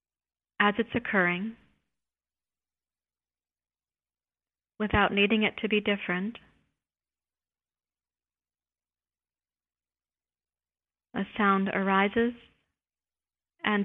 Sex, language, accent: female, English, American